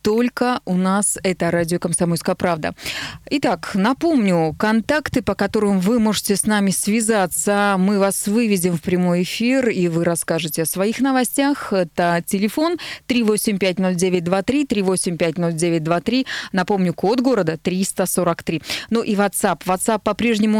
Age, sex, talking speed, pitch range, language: 20-39, female, 120 wpm, 180-220 Hz, Russian